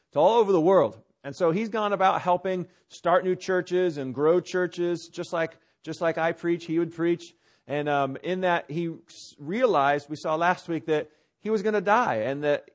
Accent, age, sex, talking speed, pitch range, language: American, 40-59, male, 210 wpm, 165-210 Hz, English